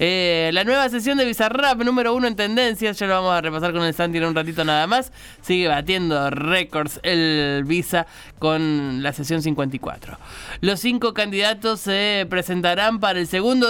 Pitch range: 160-205 Hz